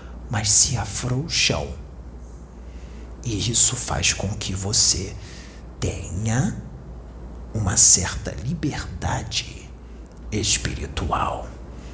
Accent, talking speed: Brazilian, 70 wpm